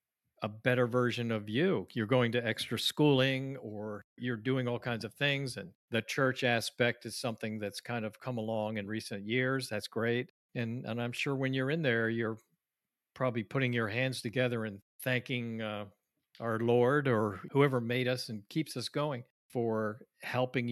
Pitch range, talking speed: 110-125 Hz, 180 wpm